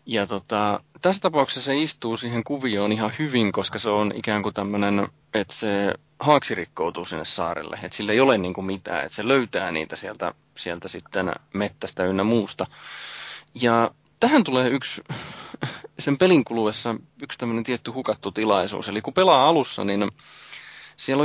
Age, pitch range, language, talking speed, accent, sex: 20-39, 100-120 Hz, Finnish, 155 wpm, native, male